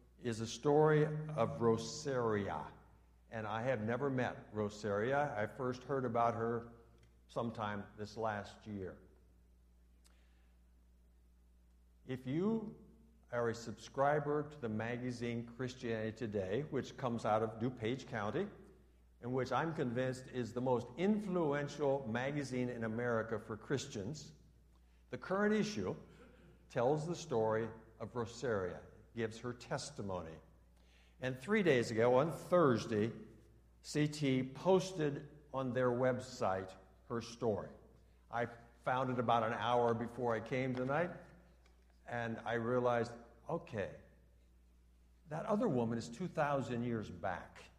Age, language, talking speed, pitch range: 60-79, English, 120 wpm, 95-130 Hz